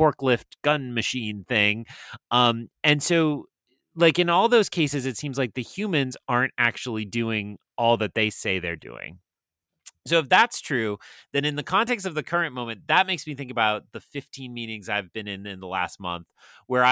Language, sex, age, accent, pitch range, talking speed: English, male, 30-49, American, 100-145 Hz, 190 wpm